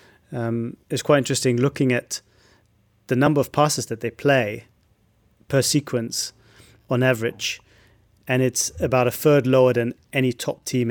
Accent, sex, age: British, male, 30-49